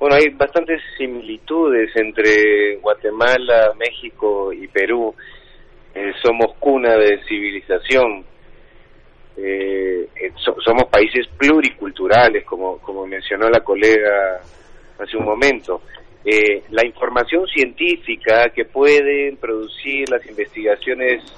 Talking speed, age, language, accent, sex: 95 wpm, 30-49, Spanish, Argentinian, male